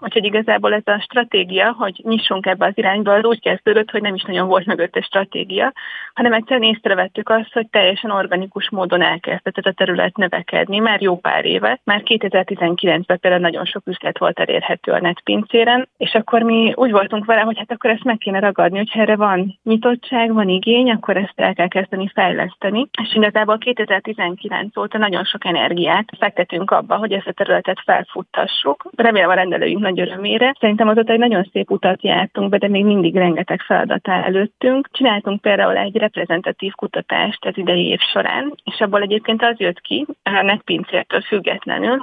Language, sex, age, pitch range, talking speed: Hungarian, female, 30-49, 190-225 Hz, 175 wpm